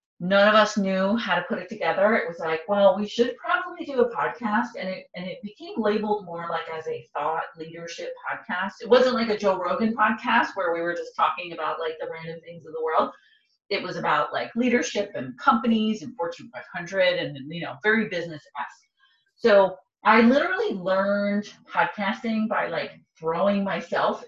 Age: 30-49